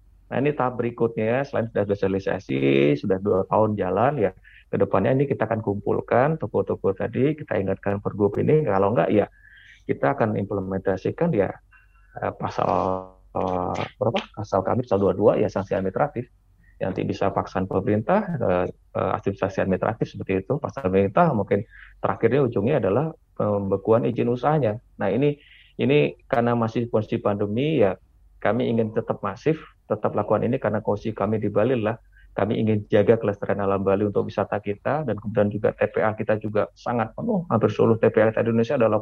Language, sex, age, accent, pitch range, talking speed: Indonesian, male, 30-49, native, 95-120 Hz, 155 wpm